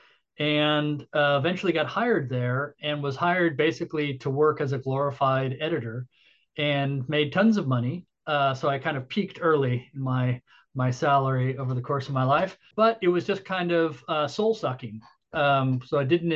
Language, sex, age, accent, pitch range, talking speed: English, male, 40-59, American, 135-170 Hz, 185 wpm